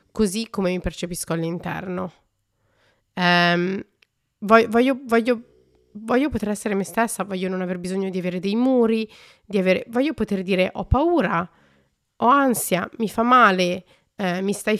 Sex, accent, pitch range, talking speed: female, native, 180-215 Hz, 145 wpm